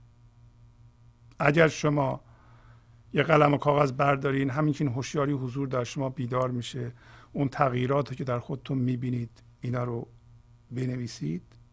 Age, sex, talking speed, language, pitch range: 50-69, male, 130 wpm, Persian, 120-160 Hz